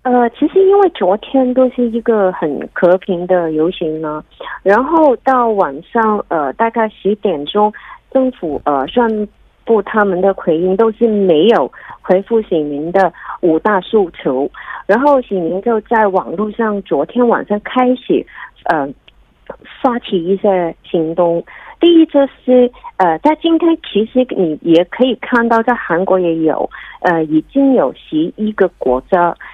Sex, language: female, Korean